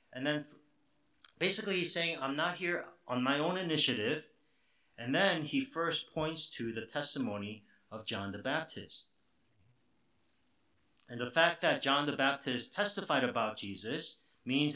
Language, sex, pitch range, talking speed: English, male, 110-155 Hz, 140 wpm